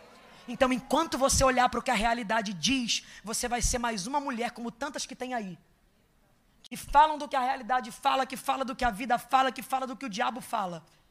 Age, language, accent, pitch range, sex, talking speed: 20-39, Portuguese, Brazilian, 215-255 Hz, female, 225 wpm